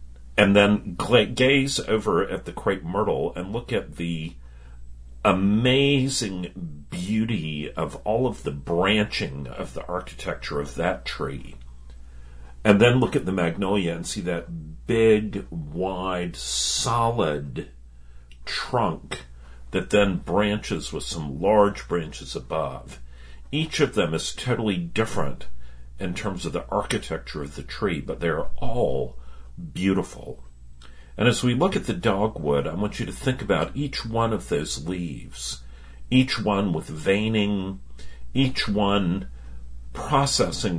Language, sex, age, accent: English, male, 50-69, American